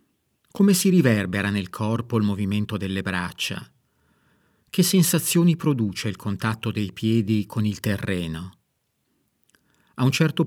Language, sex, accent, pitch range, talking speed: Italian, male, native, 110-135 Hz, 125 wpm